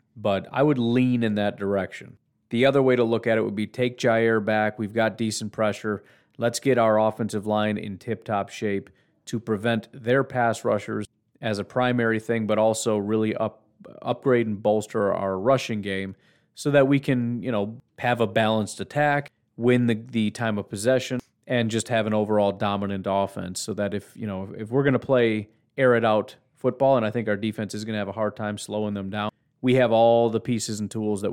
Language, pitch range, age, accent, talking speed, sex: English, 100-120 Hz, 40-59, American, 215 wpm, male